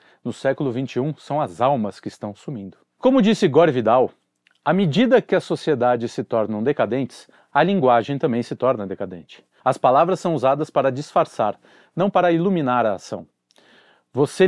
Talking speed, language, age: 160 wpm, Portuguese, 40-59